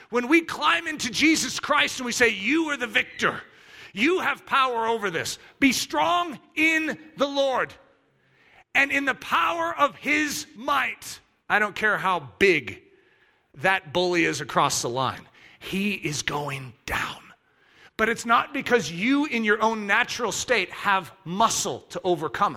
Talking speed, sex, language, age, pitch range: 155 wpm, male, English, 40-59, 210-285 Hz